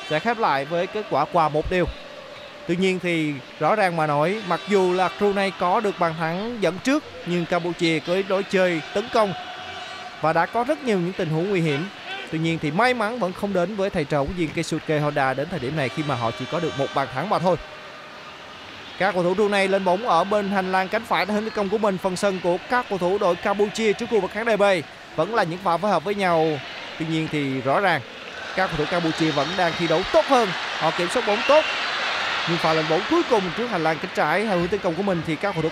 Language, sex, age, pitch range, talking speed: Vietnamese, male, 20-39, 170-275 Hz, 260 wpm